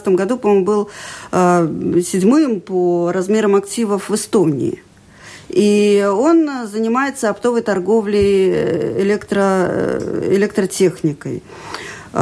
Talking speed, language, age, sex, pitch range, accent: 90 wpm, Russian, 40-59, female, 185-240 Hz, native